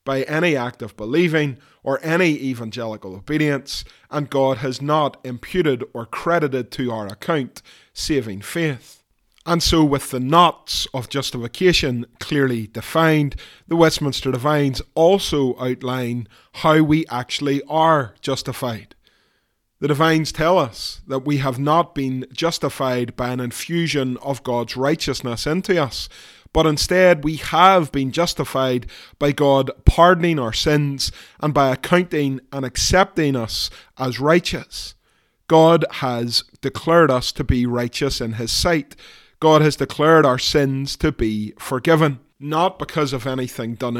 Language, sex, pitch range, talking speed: English, male, 130-160 Hz, 135 wpm